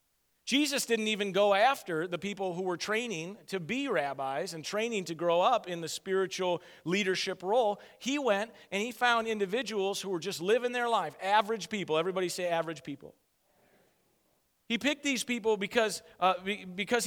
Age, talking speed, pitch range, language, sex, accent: 40-59, 170 wpm, 150-205 Hz, English, male, American